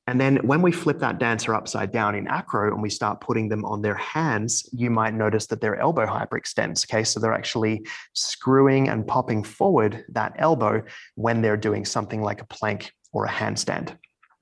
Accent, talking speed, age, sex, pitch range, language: Australian, 190 wpm, 30-49, male, 110-135 Hz, English